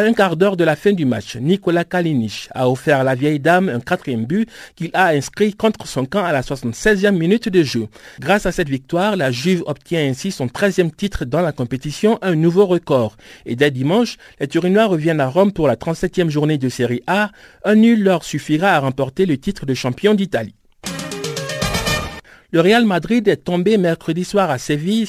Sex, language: male, French